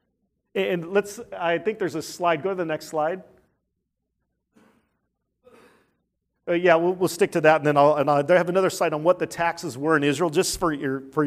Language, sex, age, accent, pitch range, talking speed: English, male, 40-59, American, 170-230 Hz, 195 wpm